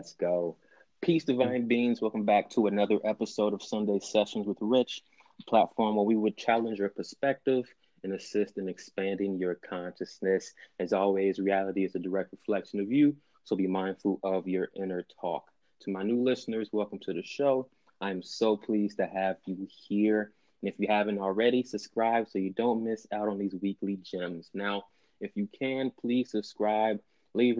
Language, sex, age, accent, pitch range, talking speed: English, male, 20-39, American, 95-115 Hz, 180 wpm